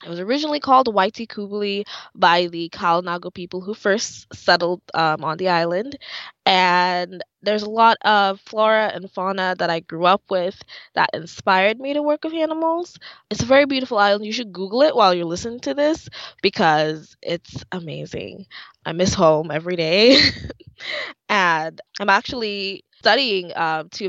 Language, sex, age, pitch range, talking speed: English, female, 20-39, 175-230 Hz, 160 wpm